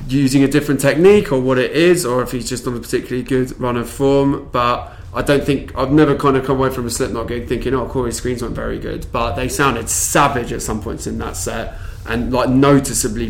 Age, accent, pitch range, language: 20-39, British, 115-135 Hz, English